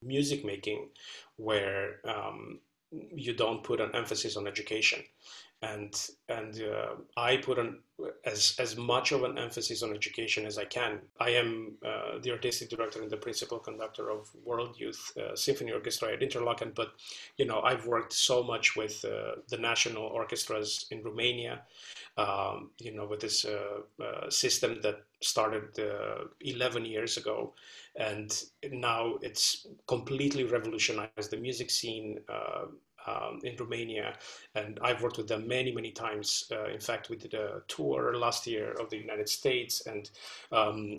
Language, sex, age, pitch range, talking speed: English, male, 30-49, 105-125 Hz, 160 wpm